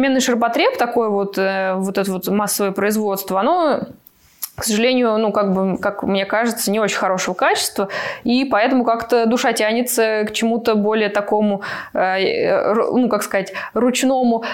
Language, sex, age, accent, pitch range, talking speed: Russian, female, 20-39, native, 200-245 Hz, 145 wpm